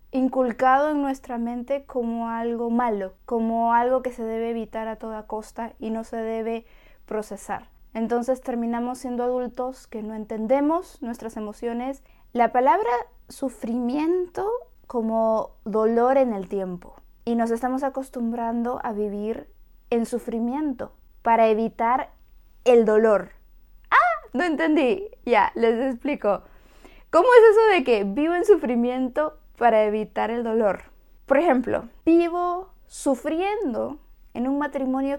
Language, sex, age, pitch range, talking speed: Spanish, female, 20-39, 220-260 Hz, 130 wpm